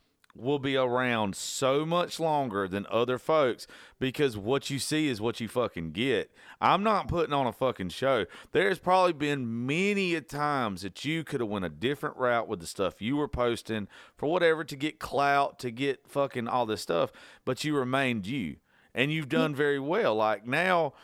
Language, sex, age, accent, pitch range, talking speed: English, male, 40-59, American, 110-150 Hz, 190 wpm